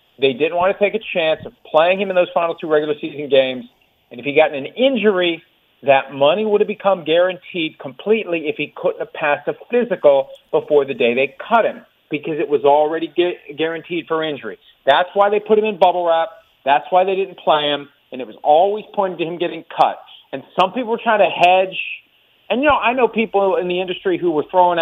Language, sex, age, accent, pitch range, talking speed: English, male, 40-59, American, 150-195 Hz, 220 wpm